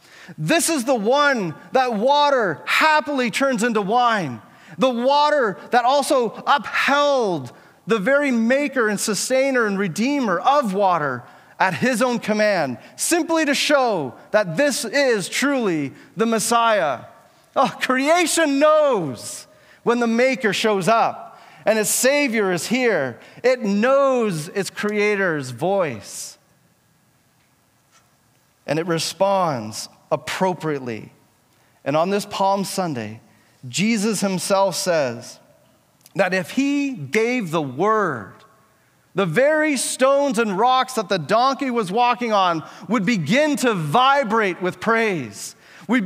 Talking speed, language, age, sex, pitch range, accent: 120 wpm, English, 30-49, male, 190-275 Hz, American